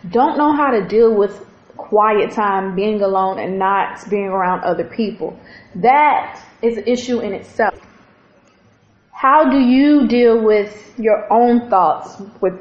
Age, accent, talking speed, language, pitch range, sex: 20-39, American, 150 wpm, English, 210-245 Hz, female